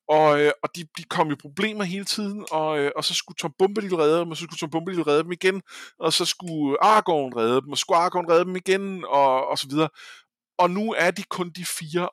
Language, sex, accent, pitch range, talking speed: Danish, male, native, 150-185 Hz, 250 wpm